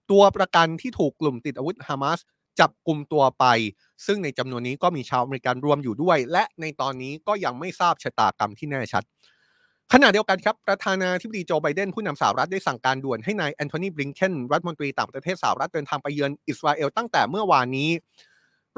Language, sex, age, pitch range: Thai, male, 20-39, 135-195 Hz